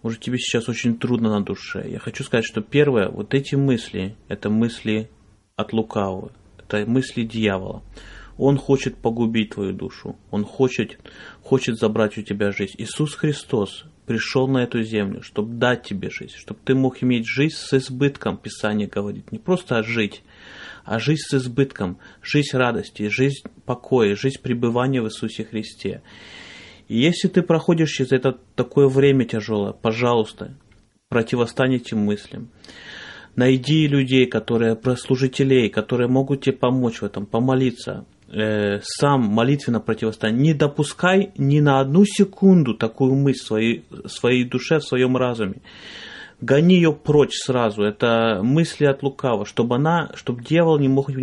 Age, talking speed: 30-49, 145 wpm